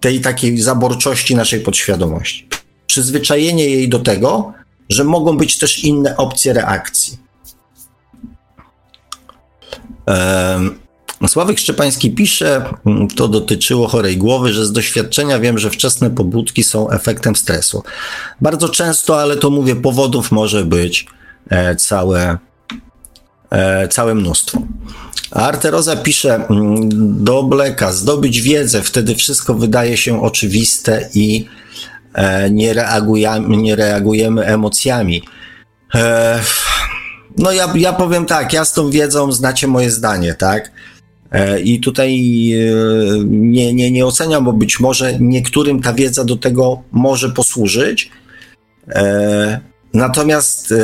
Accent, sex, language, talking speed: native, male, Polish, 115 wpm